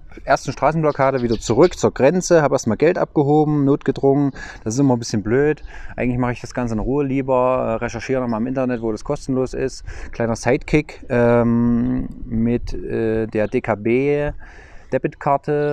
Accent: German